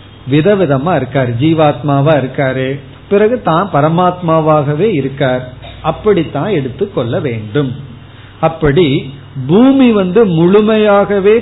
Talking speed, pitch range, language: 75 wpm, 135-185 Hz, Tamil